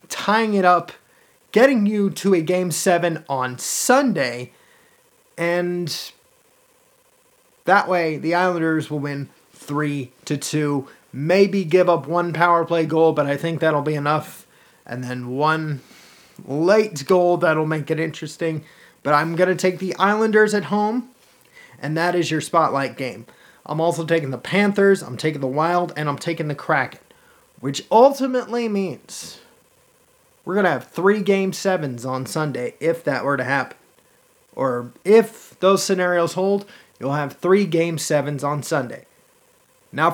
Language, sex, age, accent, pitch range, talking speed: English, male, 30-49, American, 150-210 Hz, 150 wpm